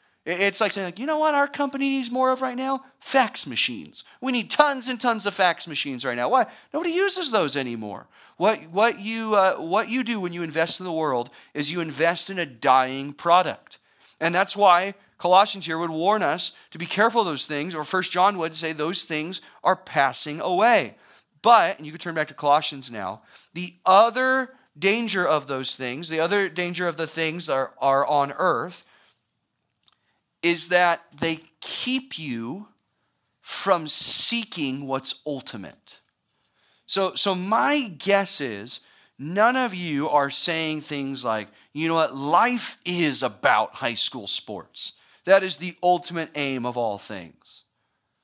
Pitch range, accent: 145-205 Hz, American